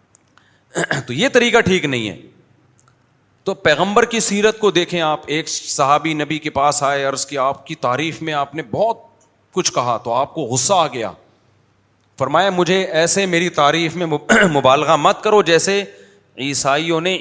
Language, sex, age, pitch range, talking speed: Urdu, male, 30-49, 140-185 Hz, 165 wpm